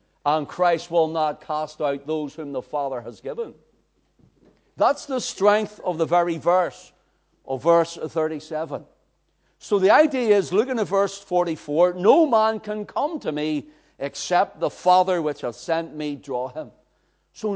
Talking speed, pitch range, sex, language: 155 wpm, 155-255 Hz, male, English